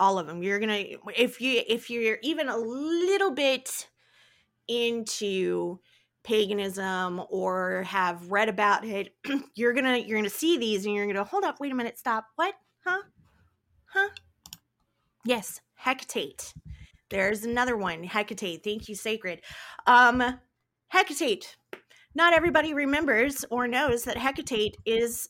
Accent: American